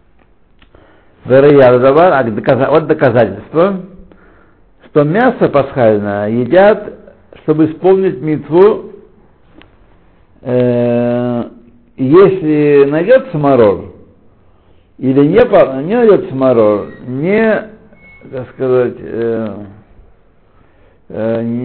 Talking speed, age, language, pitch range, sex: 60 wpm, 60-79, Russian, 110-165 Hz, male